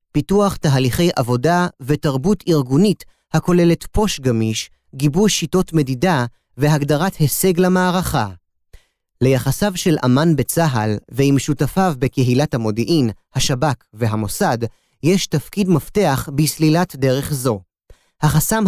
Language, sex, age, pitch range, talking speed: Hebrew, male, 30-49, 130-180 Hz, 100 wpm